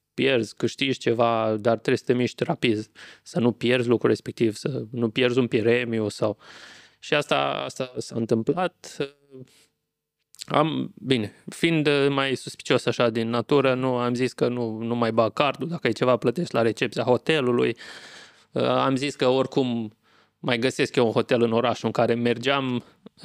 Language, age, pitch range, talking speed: Romanian, 20-39, 115-140 Hz, 160 wpm